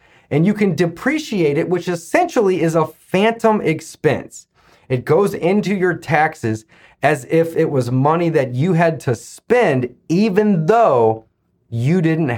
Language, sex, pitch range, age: English, male, 125-180 Hz, 30-49